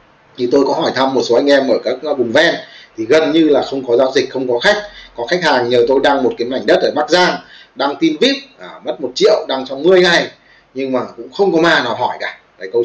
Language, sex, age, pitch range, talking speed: Vietnamese, male, 20-39, 155-230 Hz, 275 wpm